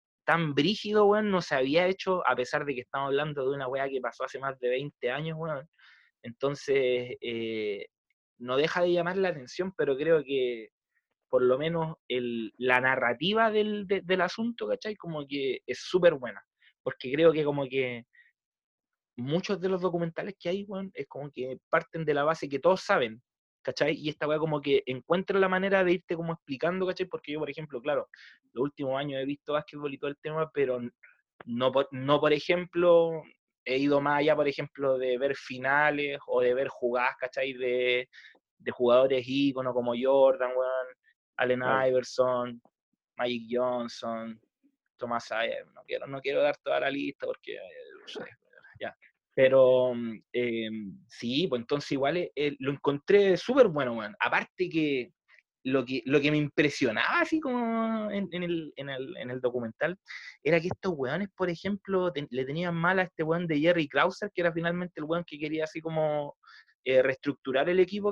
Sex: male